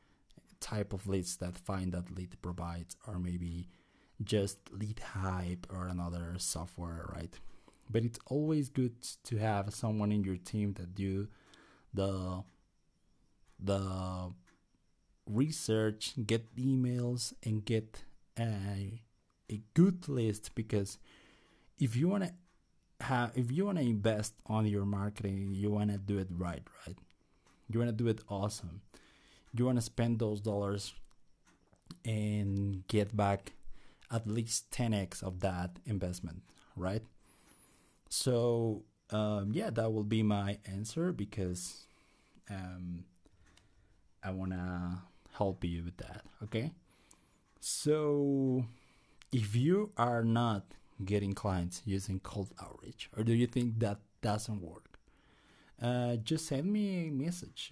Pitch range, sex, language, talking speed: 95-115 Hz, male, Spanish, 130 wpm